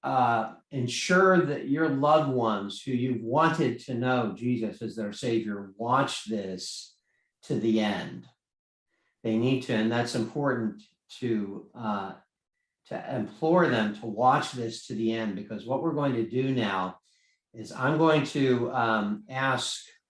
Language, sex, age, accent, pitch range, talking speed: English, male, 50-69, American, 110-130 Hz, 150 wpm